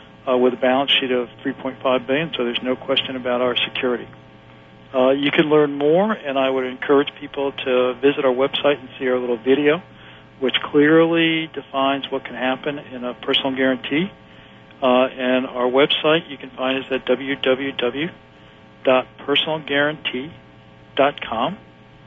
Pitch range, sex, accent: 125-140 Hz, male, American